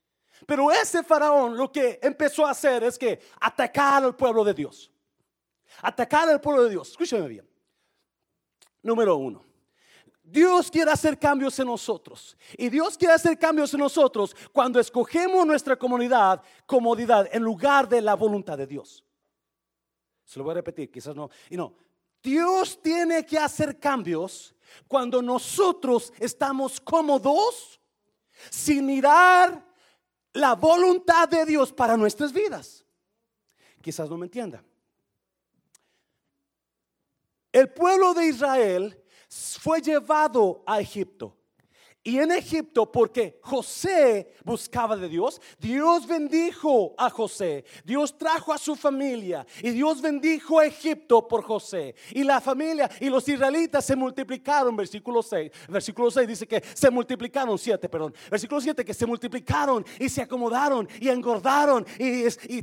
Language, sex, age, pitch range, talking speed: Spanish, male, 40-59, 230-295 Hz, 135 wpm